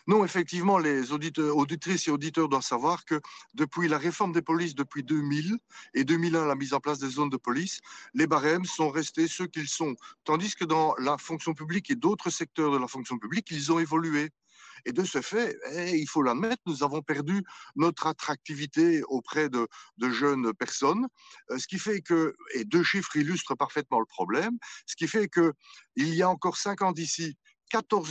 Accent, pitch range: French, 150-195 Hz